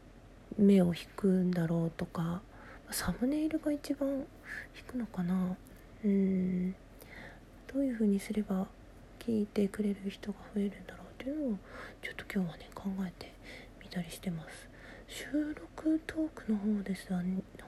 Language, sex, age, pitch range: Japanese, female, 40-59, 185-235 Hz